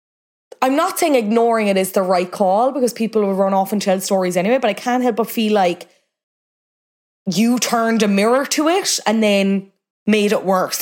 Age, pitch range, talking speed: 20-39, 180-235 Hz, 200 wpm